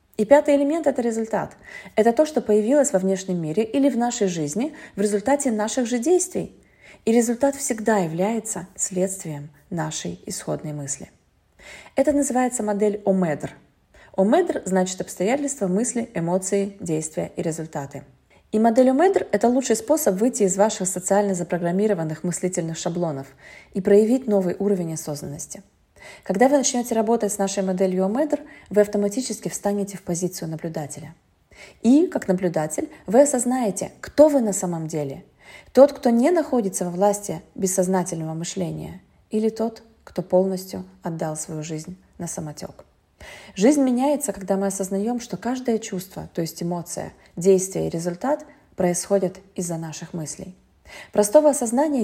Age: 20-39